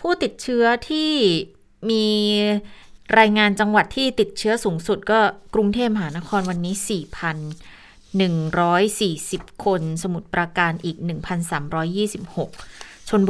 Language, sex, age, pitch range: Thai, female, 20-39, 170-205 Hz